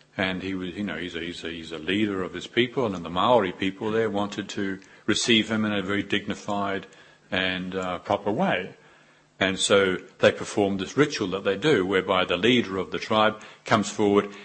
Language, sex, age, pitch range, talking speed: English, male, 50-69, 85-105 Hz, 190 wpm